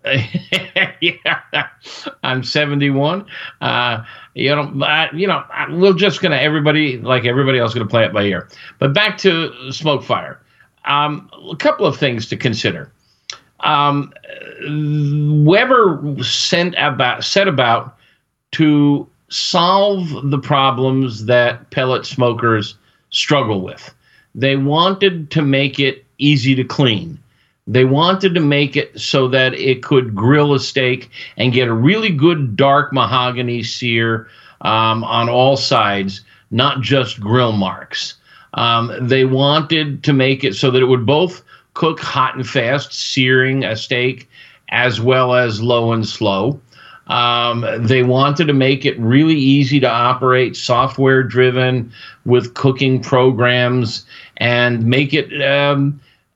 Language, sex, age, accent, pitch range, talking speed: English, male, 50-69, American, 125-145 Hz, 135 wpm